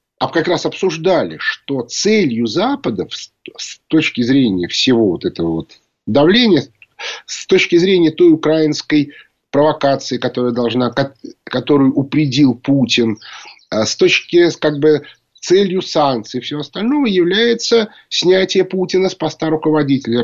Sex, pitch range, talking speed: male, 140-225 Hz, 120 wpm